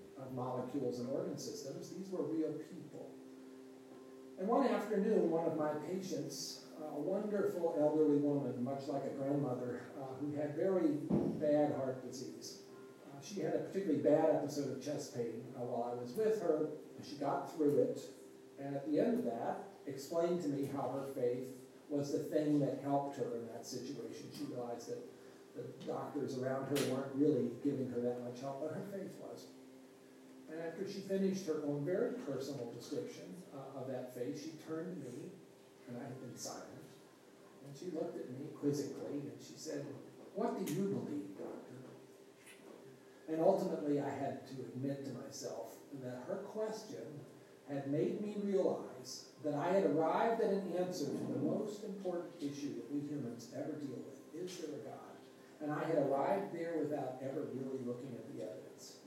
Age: 50-69